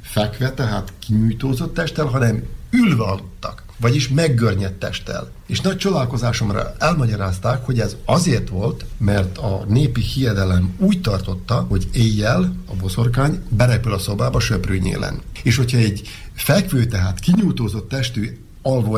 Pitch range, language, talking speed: 100-135 Hz, Hungarian, 125 wpm